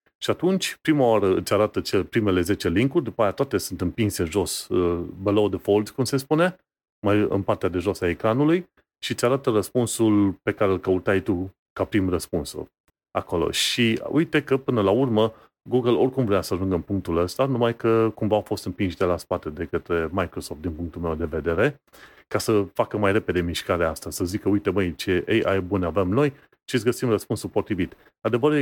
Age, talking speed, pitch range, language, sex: 30-49, 200 wpm, 95-125 Hz, Romanian, male